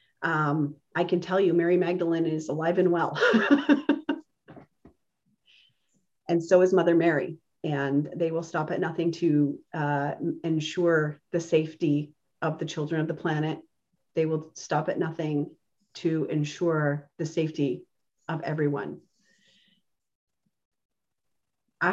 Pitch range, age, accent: 170-210 Hz, 30-49, American